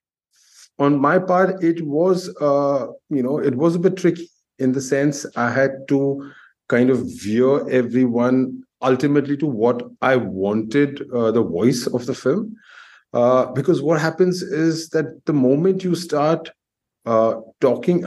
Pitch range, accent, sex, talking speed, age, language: 120-160 Hz, Indian, male, 155 wpm, 30-49, English